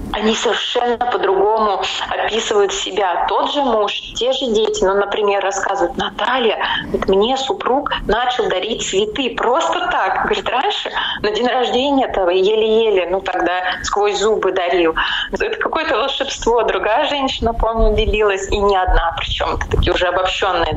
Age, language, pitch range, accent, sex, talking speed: 20-39, Russian, 195-280 Hz, native, female, 145 wpm